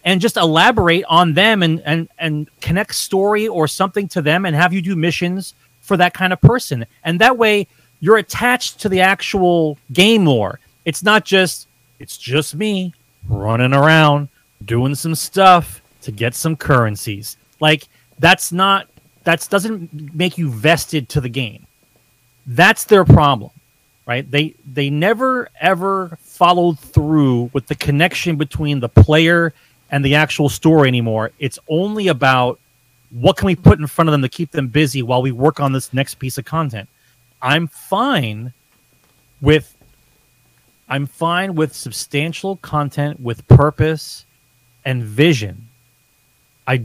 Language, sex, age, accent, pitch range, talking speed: English, male, 30-49, American, 130-170 Hz, 150 wpm